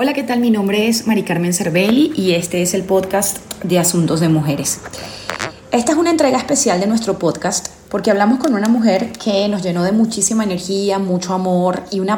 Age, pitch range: 30-49, 175-230 Hz